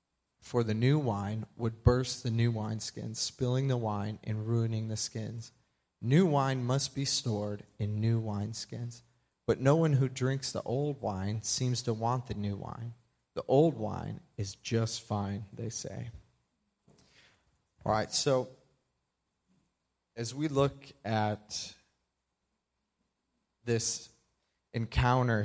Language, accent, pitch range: English, American, 110-130 Hz